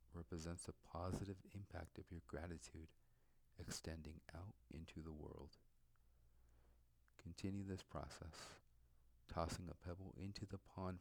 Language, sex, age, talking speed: English, male, 50-69, 115 wpm